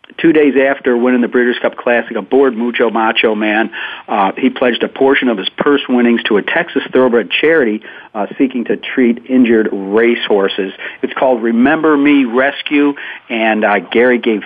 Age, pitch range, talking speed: 50-69, 115-135 Hz, 175 wpm